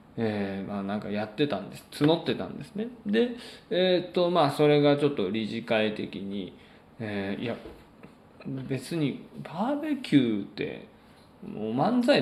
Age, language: 20-39, Japanese